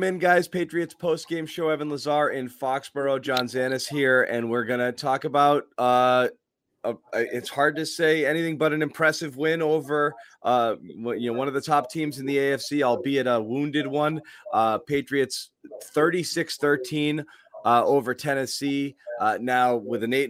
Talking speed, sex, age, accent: 170 wpm, male, 30-49, American